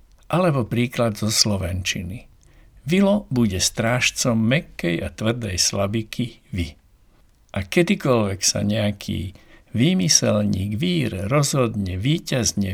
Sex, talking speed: male, 95 wpm